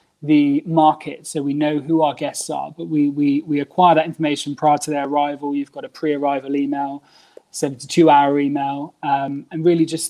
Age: 20-39